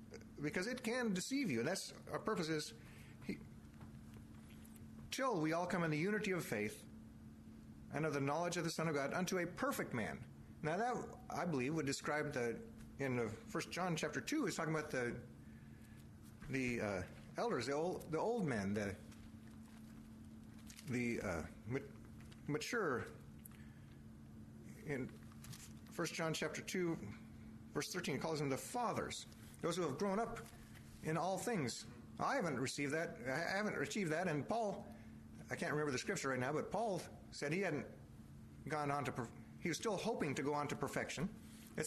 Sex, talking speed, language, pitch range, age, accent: male, 170 wpm, English, 120-185 Hz, 40-59, American